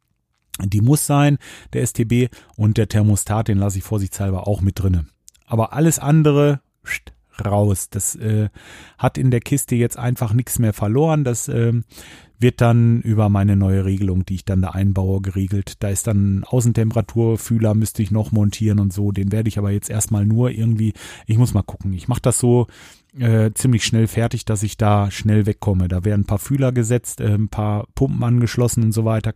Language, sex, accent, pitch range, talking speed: German, male, German, 100-120 Hz, 190 wpm